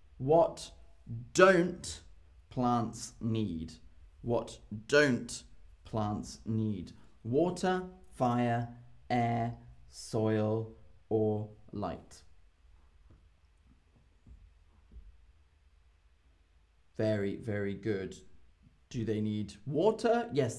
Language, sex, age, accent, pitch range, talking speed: English, male, 20-39, British, 100-145 Hz, 65 wpm